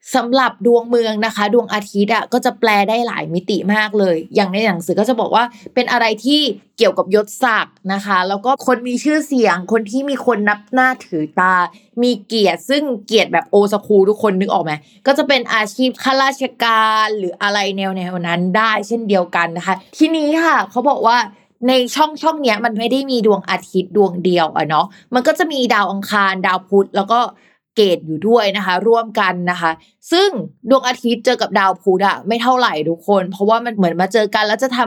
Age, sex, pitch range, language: 20-39, female, 190-245 Hz, Thai